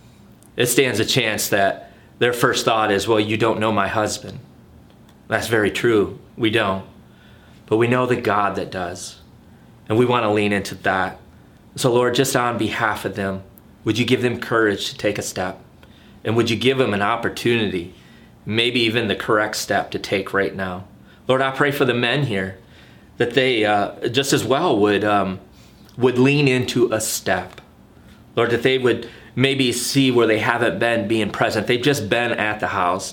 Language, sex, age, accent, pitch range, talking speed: English, male, 30-49, American, 100-120 Hz, 190 wpm